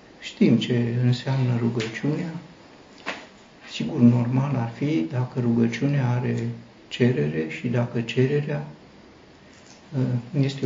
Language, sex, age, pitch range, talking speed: Romanian, male, 60-79, 115-140 Hz, 90 wpm